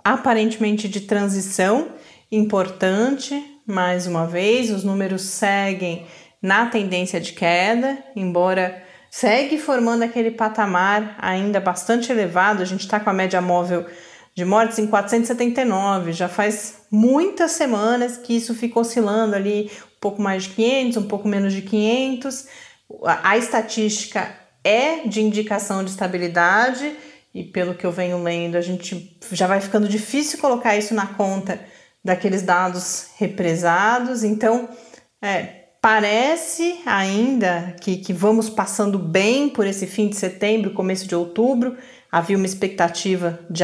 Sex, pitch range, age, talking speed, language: female, 185-235 Hz, 30-49, 135 wpm, Portuguese